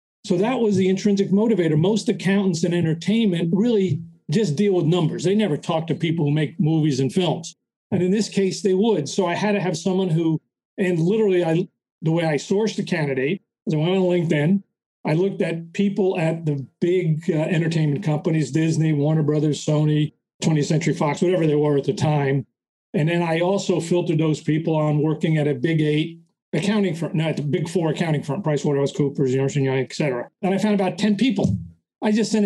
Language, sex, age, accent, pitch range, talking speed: English, male, 40-59, American, 155-195 Hz, 200 wpm